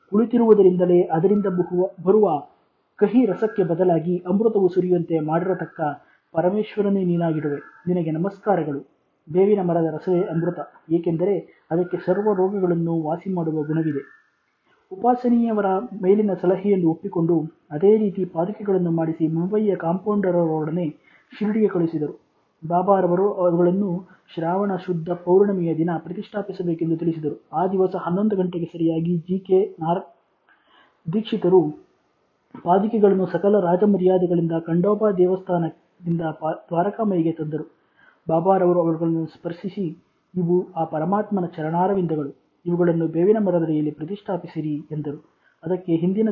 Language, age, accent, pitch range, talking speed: Kannada, 20-39, native, 165-195 Hz, 95 wpm